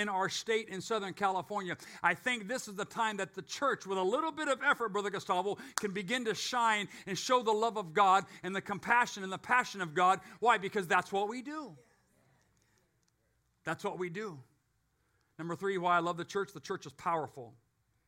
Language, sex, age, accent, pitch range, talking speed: English, male, 50-69, American, 165-220 Hz, 205 wpm